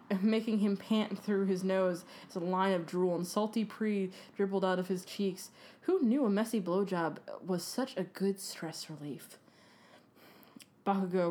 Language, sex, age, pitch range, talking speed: English, female, 20-39, 185-215 Hz, 160 wpm